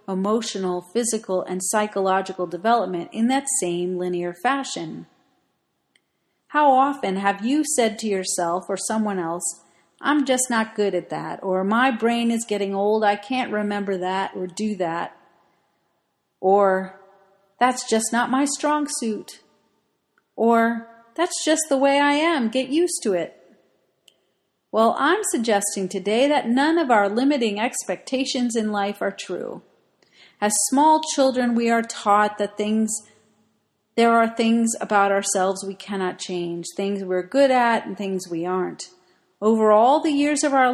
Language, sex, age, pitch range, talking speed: English, female, 40-59, 195-255 Hz, 150 wpm